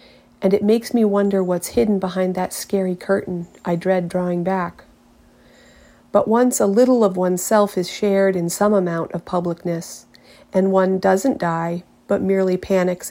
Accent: American